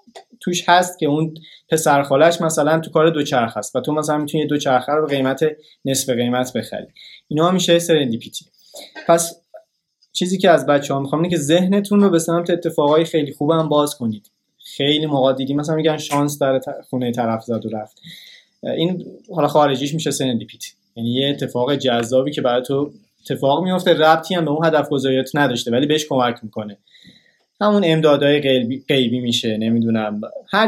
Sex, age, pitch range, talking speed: male, 20-39, 125-165 Hz, 170 wpm